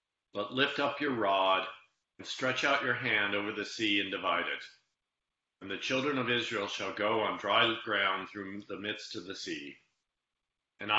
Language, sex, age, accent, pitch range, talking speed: English, male, 40-59, American, 95-120 Hz, 180 wpm